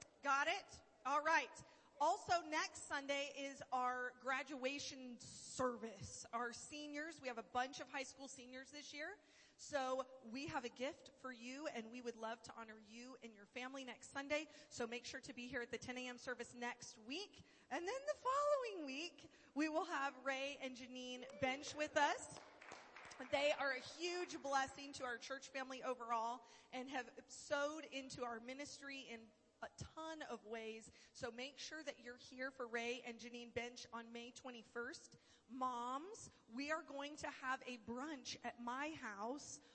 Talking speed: 175 wpm